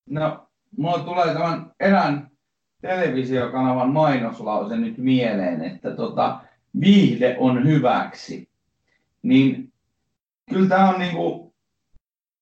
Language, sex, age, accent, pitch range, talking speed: Finnish, male, 30-49, native, 125-165 Hz, 90 wpm